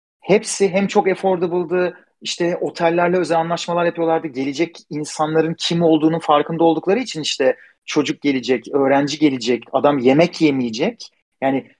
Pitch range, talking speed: 140-180 Hz, 125 wpm